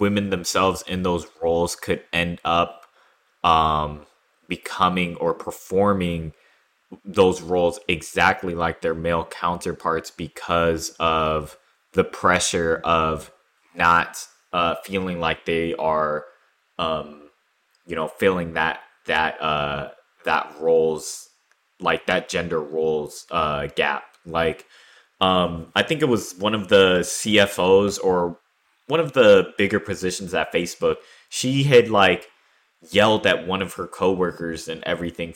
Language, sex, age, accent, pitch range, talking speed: English, male, 20-39, American, 80-95 Hz, 125 wpm